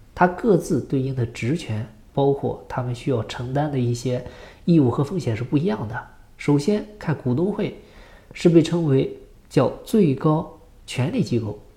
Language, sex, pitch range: Chinese, male, 110-140 Hz